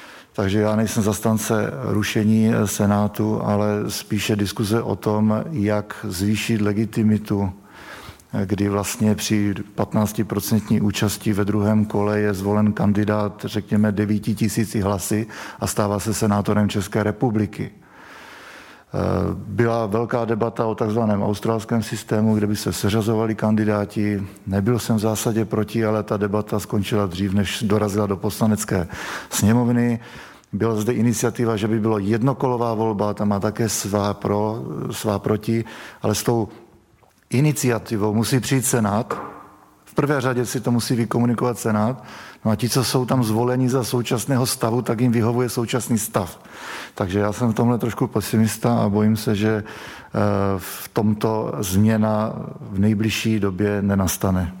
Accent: native